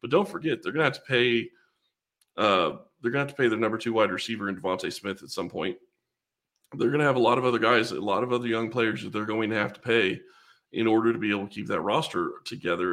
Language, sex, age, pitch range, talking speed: English, male, 20-39, 100-115 Hz, 260 wpm